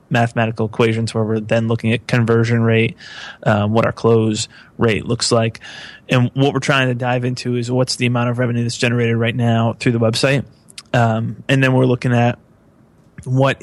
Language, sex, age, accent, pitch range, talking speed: English, male, 30-49, American, 115-125 Hz, 190 wpm